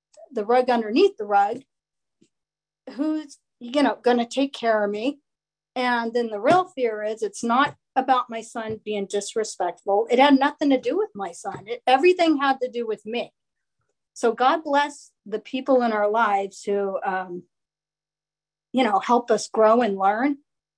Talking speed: 170 wpm